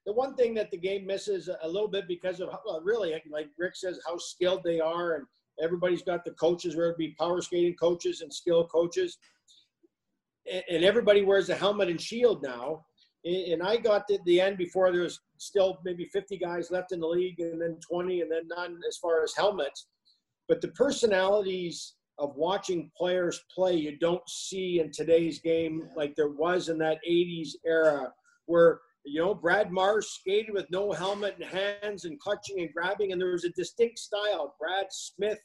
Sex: male